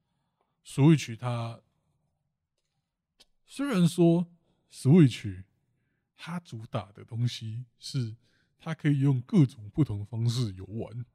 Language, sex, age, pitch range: Chinese, male, 20-39, 110-135 Hz